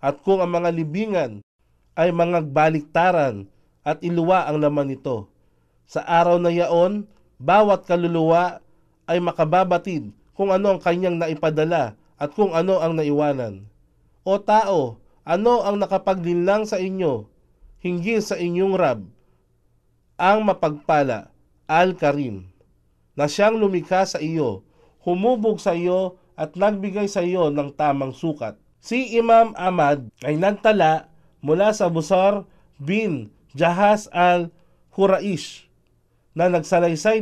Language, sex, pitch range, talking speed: Filipino, male, 145-190 Hz, 120 wpm